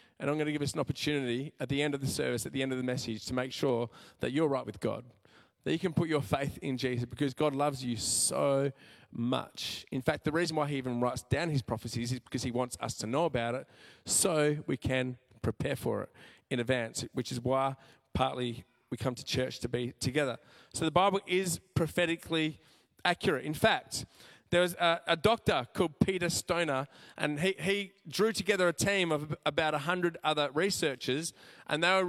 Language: English